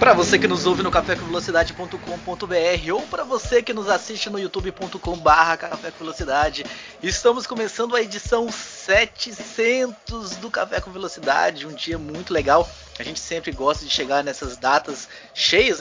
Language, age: Portuguese, 20-39